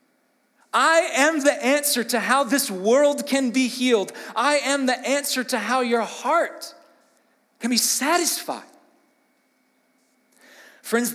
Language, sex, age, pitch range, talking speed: English, male, 40-59, 230-290 Hz, 125 wpm